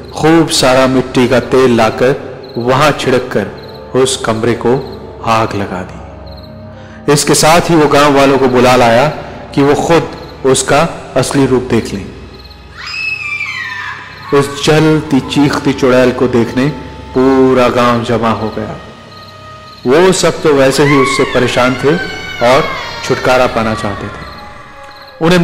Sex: male